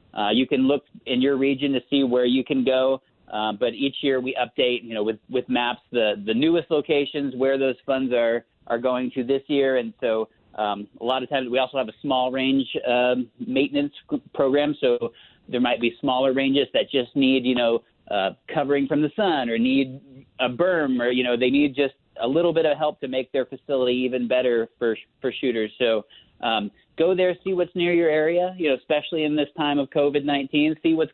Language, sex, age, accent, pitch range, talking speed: English, male, 40-59, American, 125-145 Hz, 215 wpm